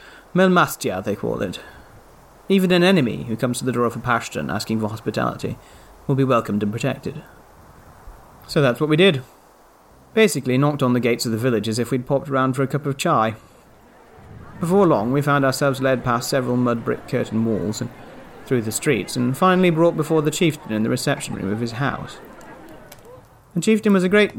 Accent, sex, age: British, male, 30-49